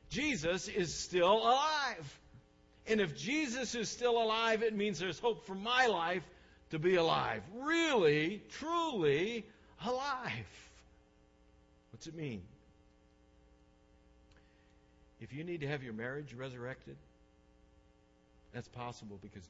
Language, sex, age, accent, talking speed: English, male, 60-79, American, 115 wpm